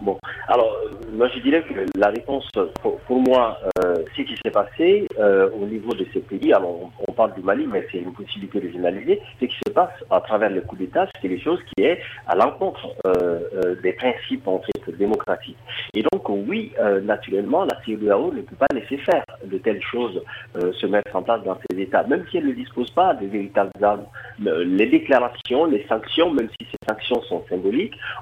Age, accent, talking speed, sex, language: 50-69, French, 210 wpm, male, French